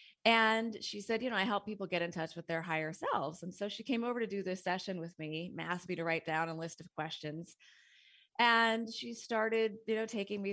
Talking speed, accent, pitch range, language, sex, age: 240 wpm, American, 160-205 Hz, English, female, 20-39